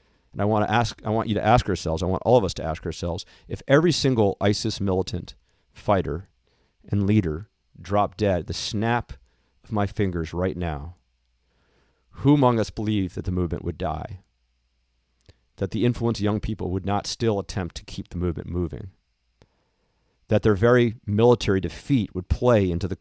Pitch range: 85-105 Hz